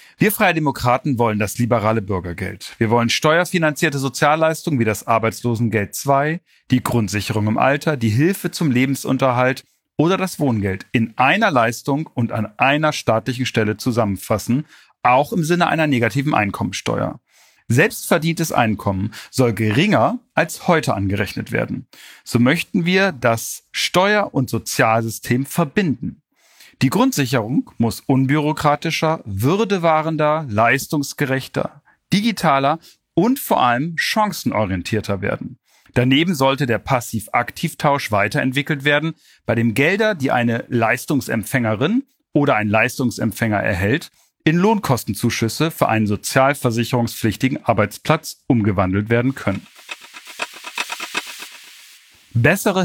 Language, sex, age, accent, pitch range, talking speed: German, male, 40-59, German, 115-155 Hz, 110 wpm